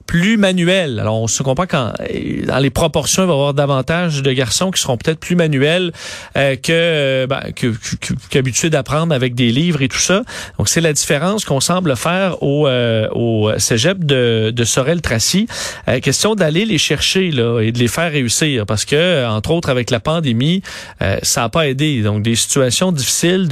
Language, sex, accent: French, male, Canadian